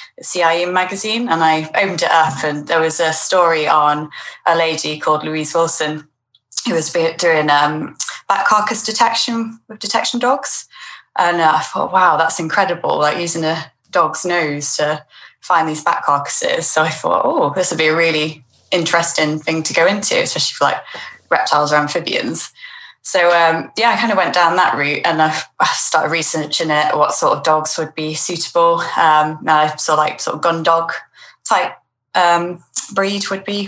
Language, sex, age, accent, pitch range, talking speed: English, female, 20-39, British, 155-200 Hz, 180 wpm